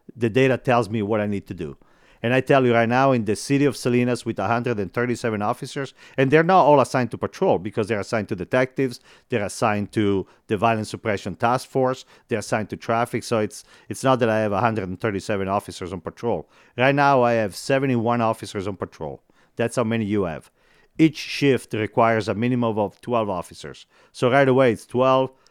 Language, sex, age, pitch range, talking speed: English, male, 50-69, 105-130 Hz, 200 wpm